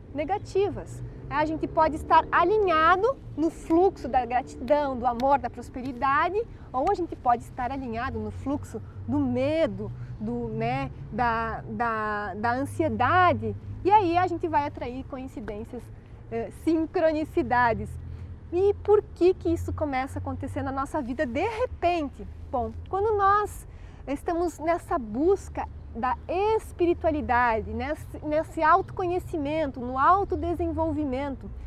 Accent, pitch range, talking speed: Brazilian, 260-355 Hz, 120 wpm